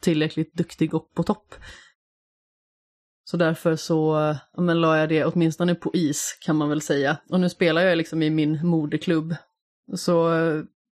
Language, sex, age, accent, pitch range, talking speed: Swedish, female, 20-39, native, 155-180 Hz, 160 wpm